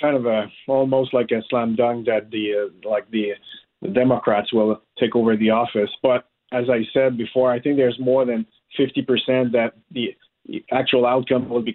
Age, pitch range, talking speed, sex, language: 40-59, 125-155 Hz, 190 wpm, male, English